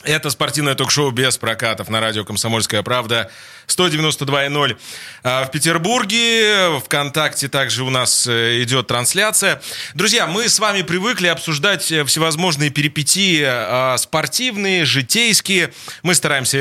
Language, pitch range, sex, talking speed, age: Russian, 130-180 Hz, male, 110 wpm, 20-39